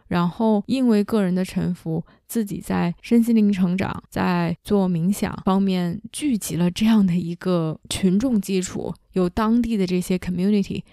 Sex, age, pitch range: female, 20-39, 185-230 Hz